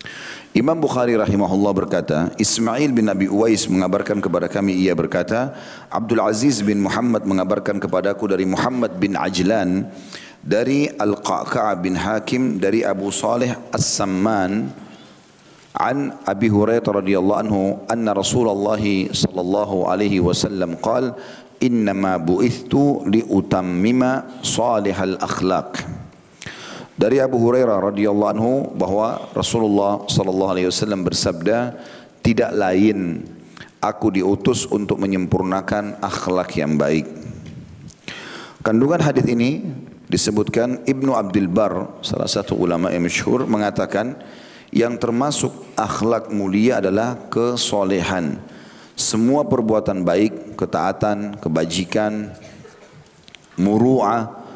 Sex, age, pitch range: male, 40-59, 95-115 Hz